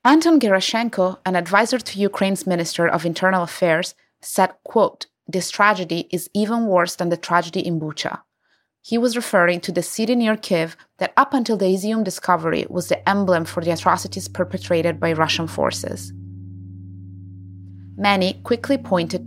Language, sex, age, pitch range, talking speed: English, female, 30-49, 155-200 Hz, 155 wpm